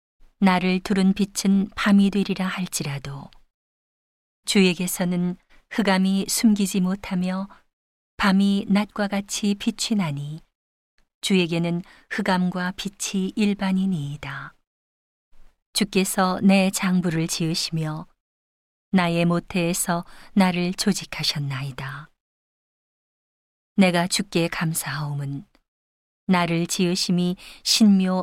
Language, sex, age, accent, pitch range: Korean, female, 40-59, native, 155-195 Hz